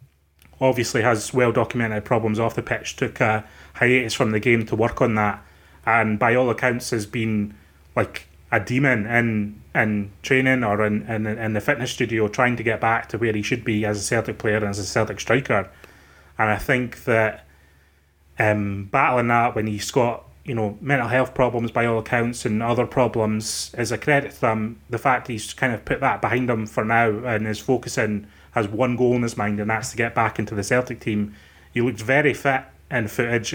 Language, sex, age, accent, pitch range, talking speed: English, male, 30-49, British, 105-120 Hz, 210 wpm